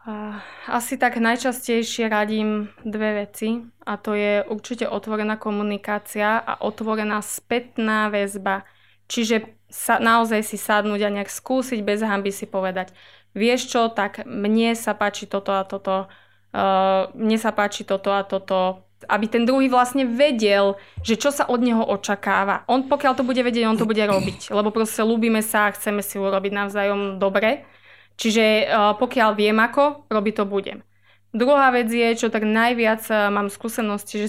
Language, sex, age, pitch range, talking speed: Slovak, female, 20-39, 200-230 Hz, 160 wpm